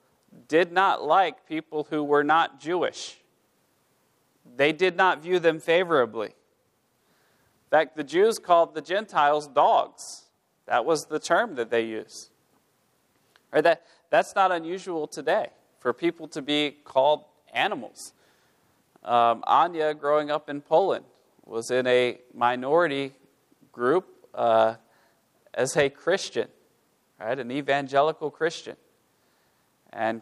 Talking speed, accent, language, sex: 120 wpm, American, English, male